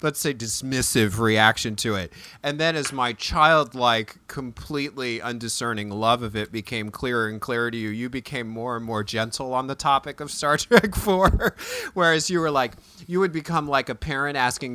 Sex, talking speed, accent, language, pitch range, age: male, 185 wpm, American, English, 105-155 Hz, 30-49